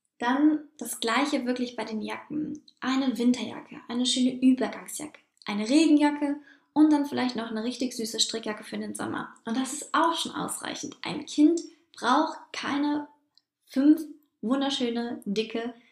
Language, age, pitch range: German, 10-29, 230-290 Hz